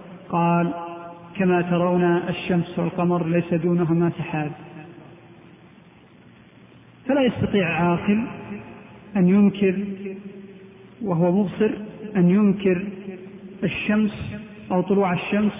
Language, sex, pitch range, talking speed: Arabic, male, 180-205 Hz, 80 wpm